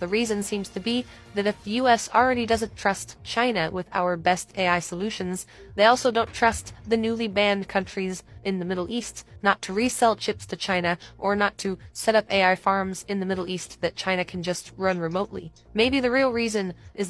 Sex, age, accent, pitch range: female, 20-39, American, 180-225 Hz